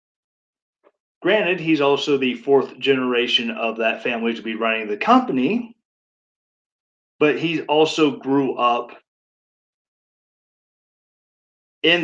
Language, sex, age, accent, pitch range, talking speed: English, male, 40-59, American, 120-145 Hz, 100 wpm